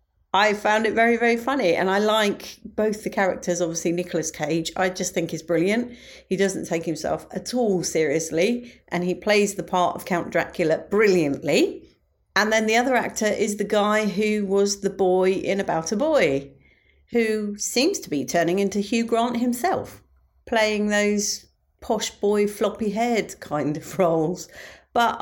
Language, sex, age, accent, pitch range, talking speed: English, female, 40-59, British, 160-225 Hz, 170 wpm